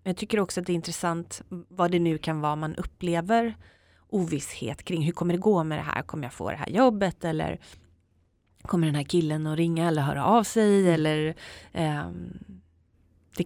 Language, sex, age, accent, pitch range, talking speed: Swedish, female, 30-49, native, 150-180 Hz, 185 wpm